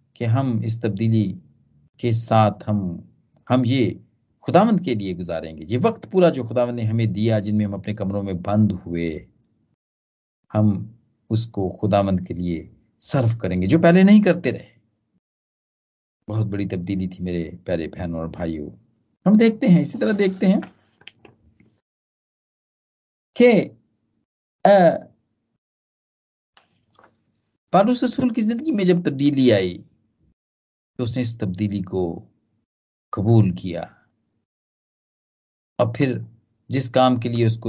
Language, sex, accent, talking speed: Hindi, male, native, 125 wpm